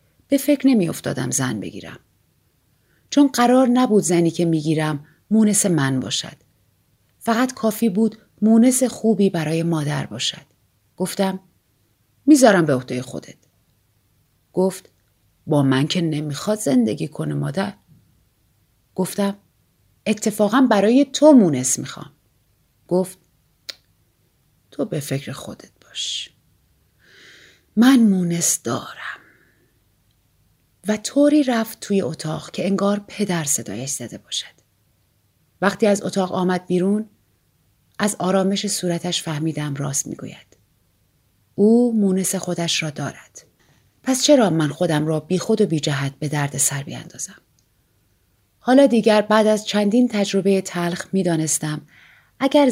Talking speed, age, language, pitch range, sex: 110 wpm, 40-59, Persian, 150-215 Hz, female